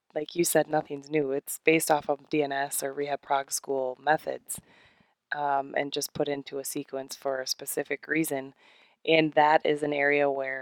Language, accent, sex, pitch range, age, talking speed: English, American, female, 145-155 Hz, 20-39, 180 wpm